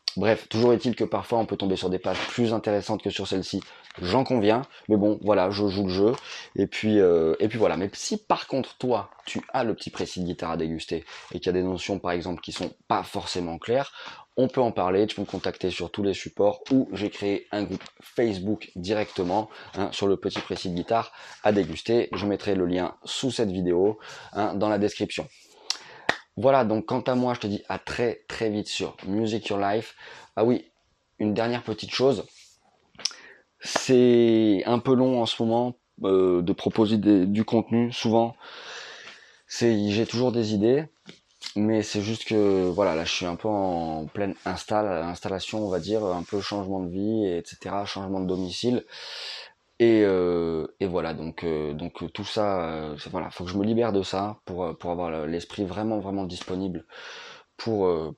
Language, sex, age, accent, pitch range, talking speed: French, male, 20-39, French, 90-110 Hz, 200 wpm